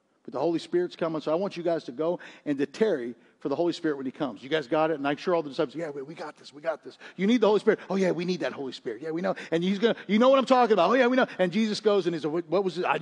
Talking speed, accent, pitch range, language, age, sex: 355 wpm, American, 180-290 Hz, English, 50-69, male